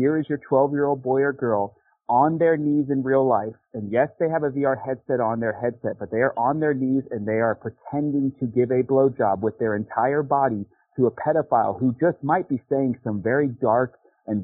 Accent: American